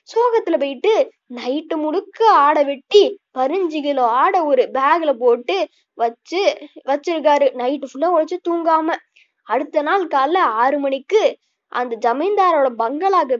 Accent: native